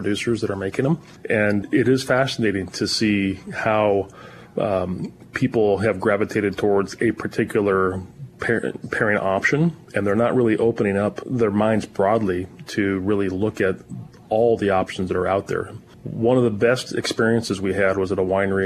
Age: 30-49